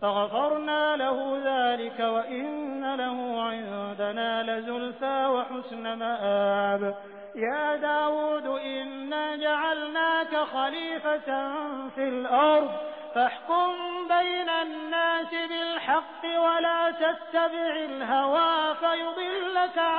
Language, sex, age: Hindi, male, 20-39